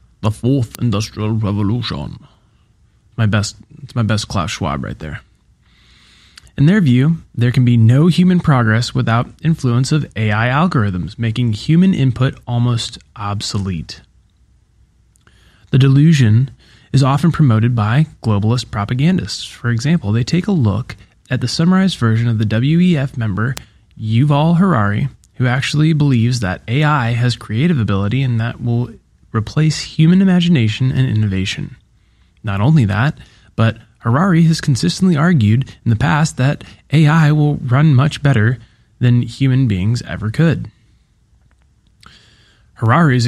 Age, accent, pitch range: 20-39, American, 110-145 Hz